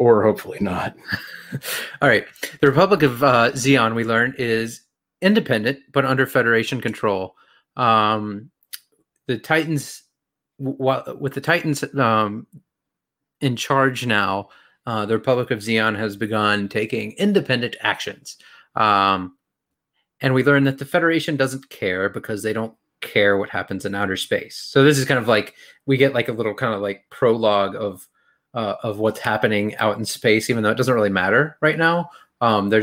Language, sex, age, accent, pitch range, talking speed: English, male, 30-49, American, 105-135 Hz, 165 wpm